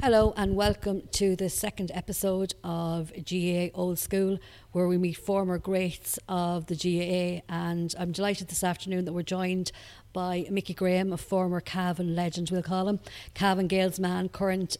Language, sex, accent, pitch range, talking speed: English, female, Irish, 175-190 Hz, 160 wpm